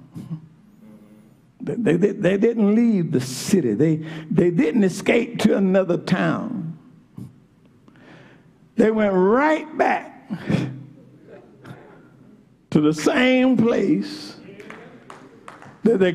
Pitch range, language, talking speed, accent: 170-245 Hz, English, 90 wpm, American